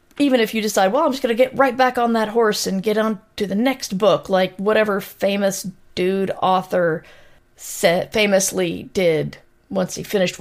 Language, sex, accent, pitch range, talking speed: English, female, American, 180-225 Hz, 185 wpm